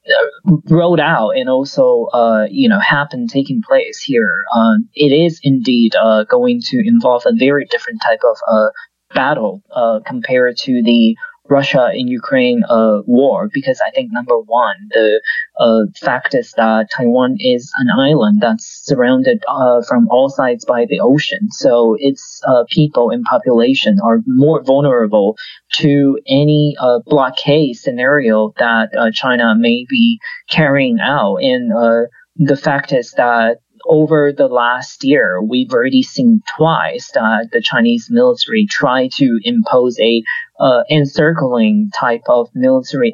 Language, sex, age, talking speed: English, male, 20-39, 150 wpm